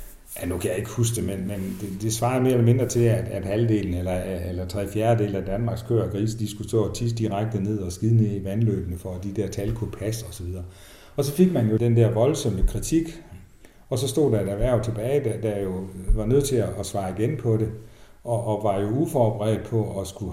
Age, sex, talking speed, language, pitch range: 60-79, male, 245 wpm, Danish, 95-115 Hz